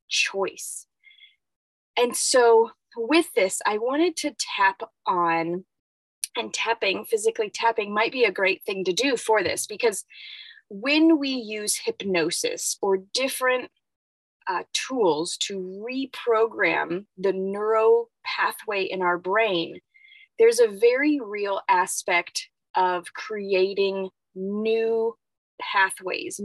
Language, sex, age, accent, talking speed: English, female, 20-39, American, 110 wpm